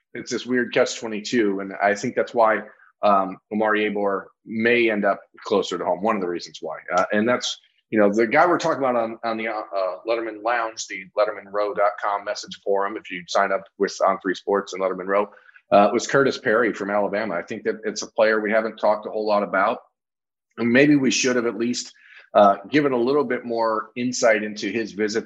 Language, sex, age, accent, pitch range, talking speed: English, male, 40-59, American, 100-125 Hz, 215 wpm